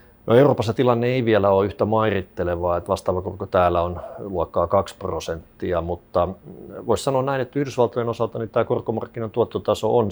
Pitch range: 90-115 Hz